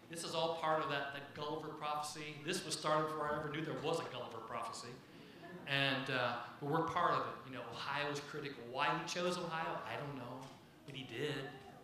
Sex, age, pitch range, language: male, 40-59, 130-160 Hz, English